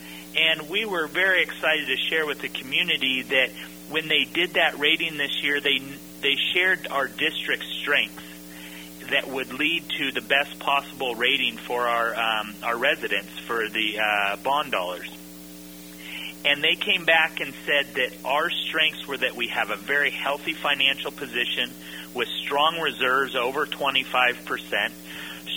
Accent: American